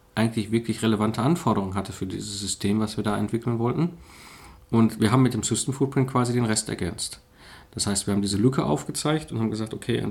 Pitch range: 105-130 Hz